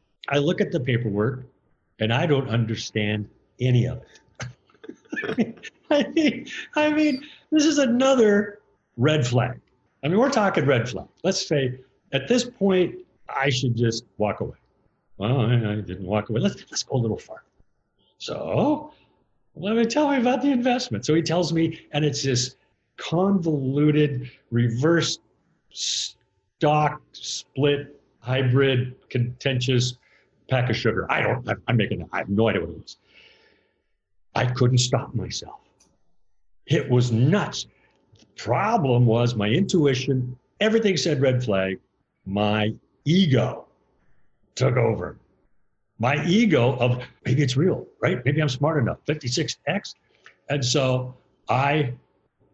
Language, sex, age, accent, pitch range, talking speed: English, male, 50-69, American, 120-170 Hz, 135 wpm